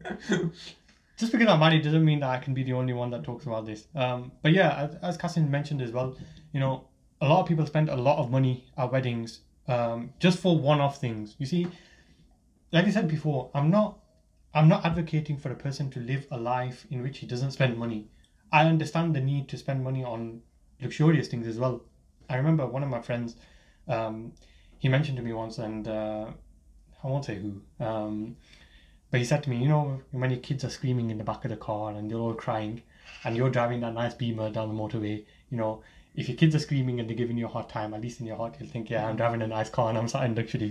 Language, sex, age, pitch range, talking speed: English, male, 20-39, 115-155 Hz, 235 wpm